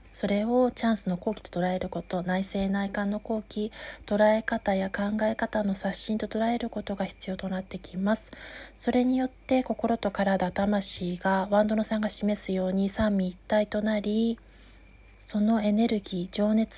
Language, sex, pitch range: Japanese, female, 185-225 Hz